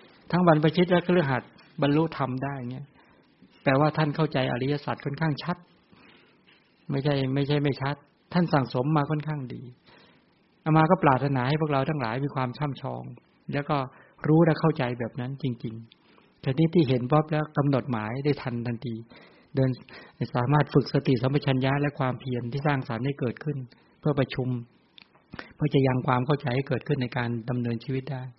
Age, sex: 60-79, male